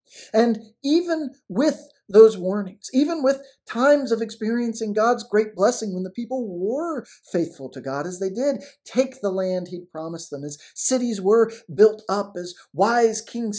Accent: American